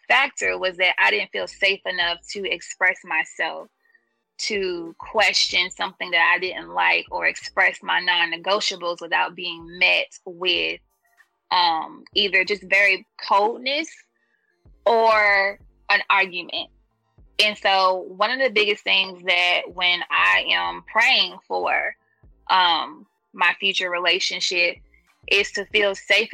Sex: female